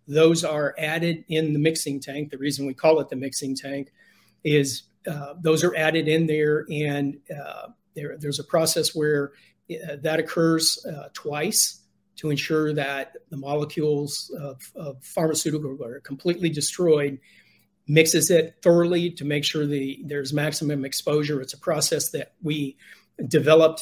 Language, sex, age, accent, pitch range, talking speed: English, male, 40-59, American, 140-160 Hz, 145 wpm